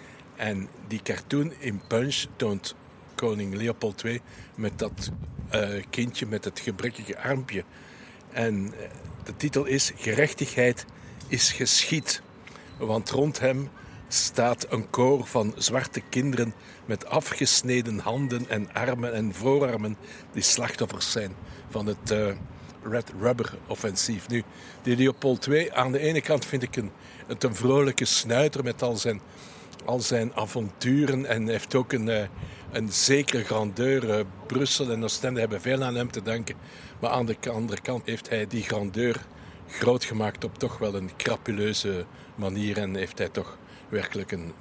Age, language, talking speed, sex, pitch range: 60-79, Dutch, 145 wpm, male, 105-130 Hz